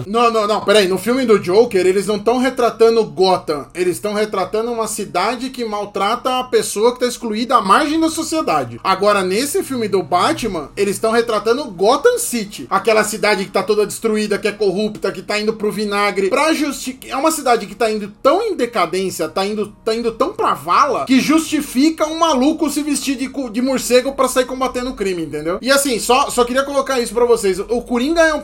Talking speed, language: 210 wpm, Portuguese